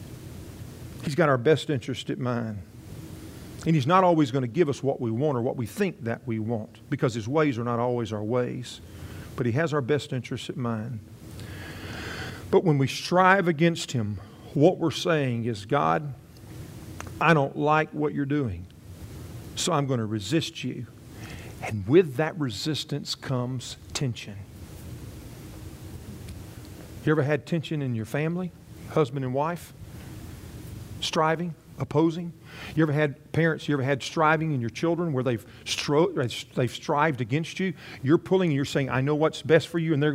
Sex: male